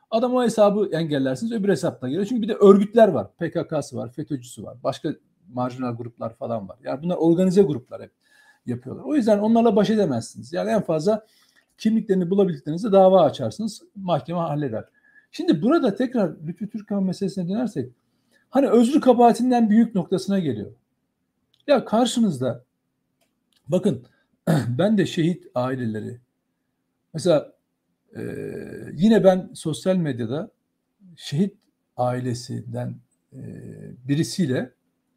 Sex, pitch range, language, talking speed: male, 135-225 Hz, Turkish, 120 wpm